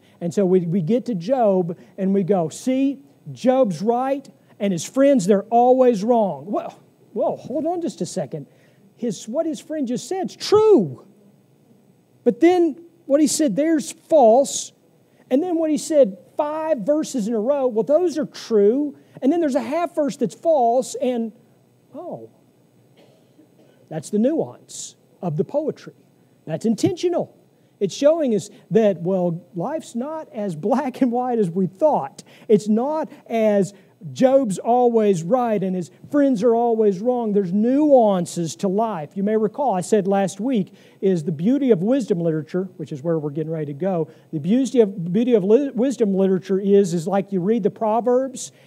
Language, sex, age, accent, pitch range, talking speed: English, male, 40-59, American, 185-260 Hz, 170 wpm